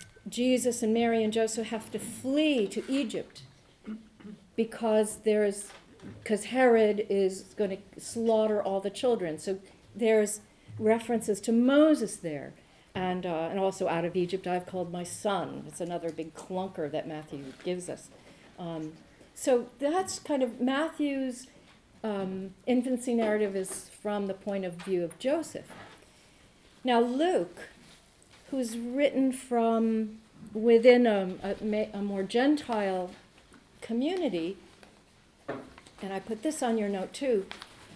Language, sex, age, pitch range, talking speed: English, female, 50-69, 190-245 Hz, 130 wpm